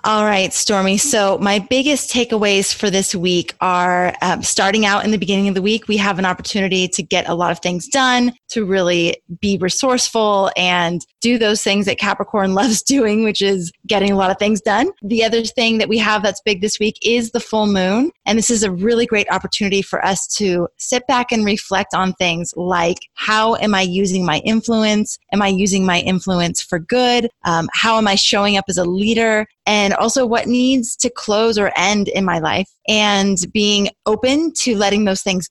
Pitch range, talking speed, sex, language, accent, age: 185-225 Hz, 205 wpm, female, English, American, 20-39